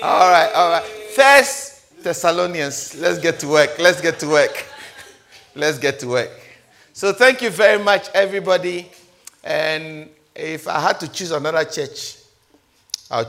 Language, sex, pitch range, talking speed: English, male, 140-190 Hz, 150 wpm